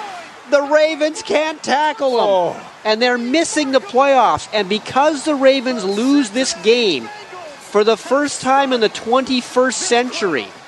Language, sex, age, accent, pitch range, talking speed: English, male, 40-59, American, 195-265 Hz, 140 wpm